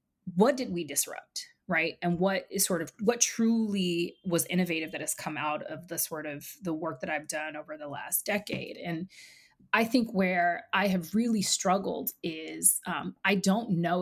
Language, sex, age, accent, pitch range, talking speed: English, female, 20-39, American, 155-200 Hz, 190 wpm